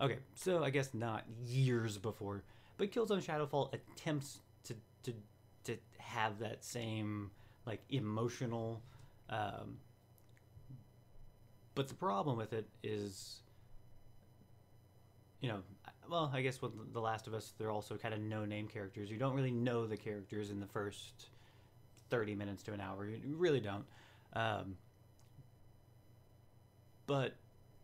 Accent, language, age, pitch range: American, English, 30-49, 105-125 Hz